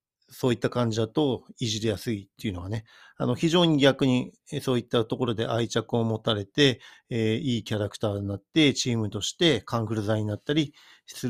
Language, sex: Japanese, male